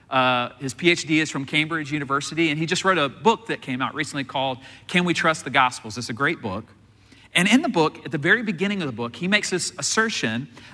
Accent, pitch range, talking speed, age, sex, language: American, 140-185 Hz, 235 wpm, 40-59, male, English